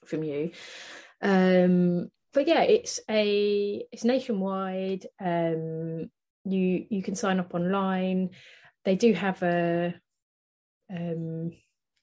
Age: 30-49